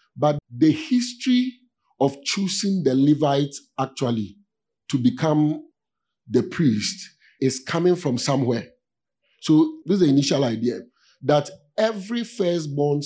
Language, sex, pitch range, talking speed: English, male, 125-165 Hz, 115 wpm